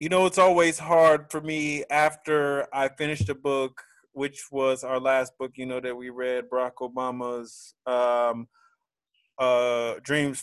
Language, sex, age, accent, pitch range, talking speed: English, male, 20-39, American, 140-175 Hz, 155 wpm